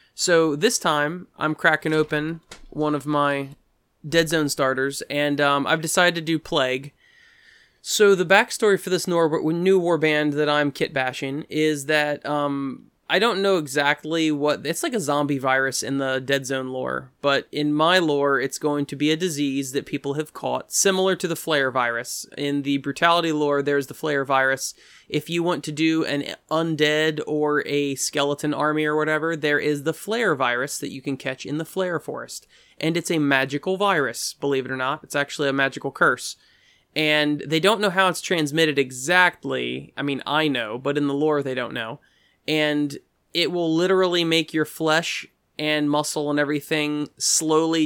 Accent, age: American, 20-39